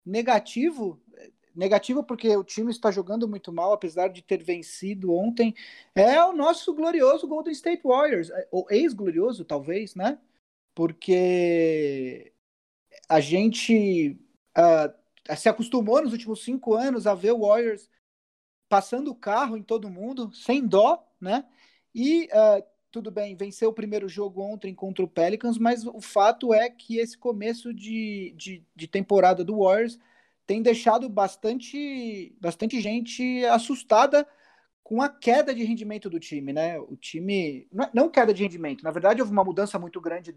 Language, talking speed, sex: Portuguese, 145 wpm, male